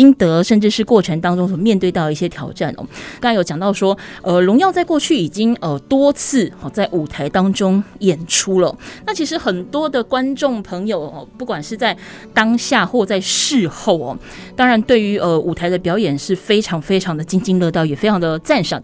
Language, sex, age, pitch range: Chinese, female, 20-39, 175-235 Hz